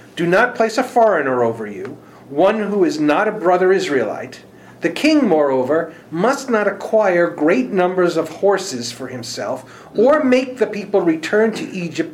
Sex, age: male, 50-69